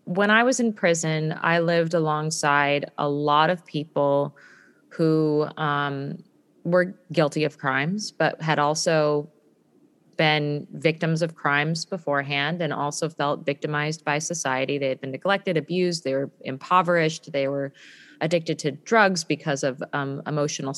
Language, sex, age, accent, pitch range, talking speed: English, female, 30-49, American, 145-170 Hz, 140 wpm